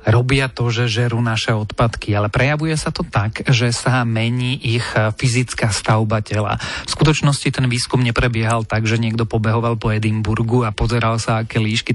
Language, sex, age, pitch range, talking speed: Slovak, male, 30-49, 110-125 Hz, 170 wpm